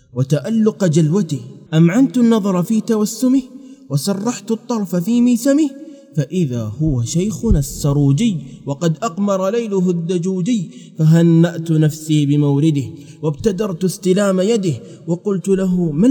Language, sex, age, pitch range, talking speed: Arabic, male, 20-39, 135-195 Hz, 100 wpm